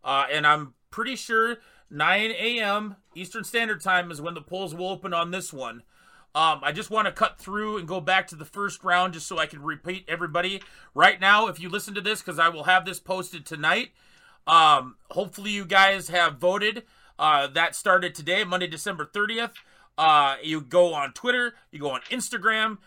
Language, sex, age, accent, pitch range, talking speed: English, male, 30-49, American, 175-220 Hz, 195 wpm